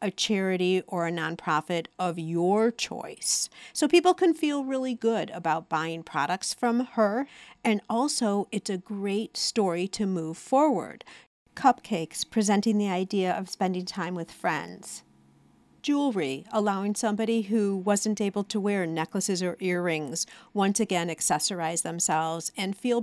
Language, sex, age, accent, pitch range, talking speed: English, female, 50-69, American, 170-230 Hz, 140 wpm